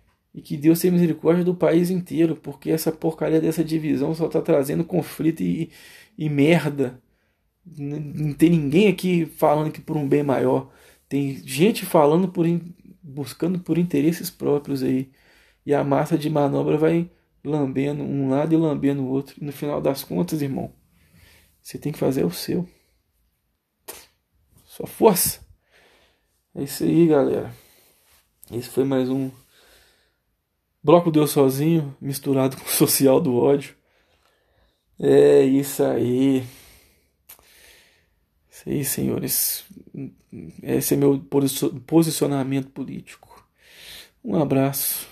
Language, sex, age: Portuguese, male, 20-39